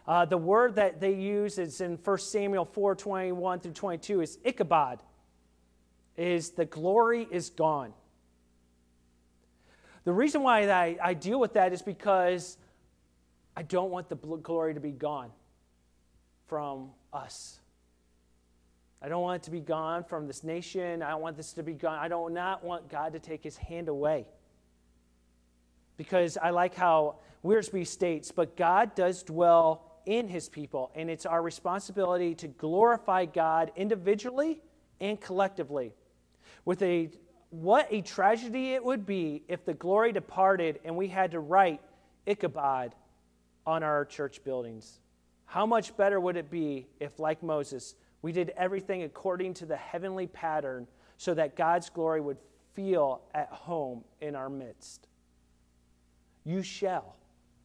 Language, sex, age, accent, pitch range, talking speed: English, male, 40-59, American, 125-185 Hz, 150 wpm